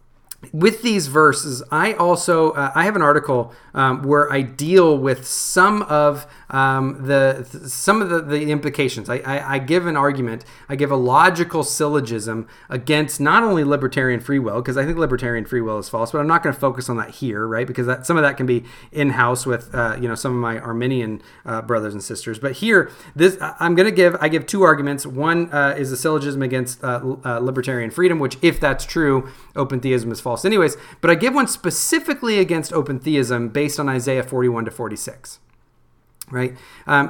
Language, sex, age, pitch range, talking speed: English, male, 30-49, 125-155 Hz, 205 wpm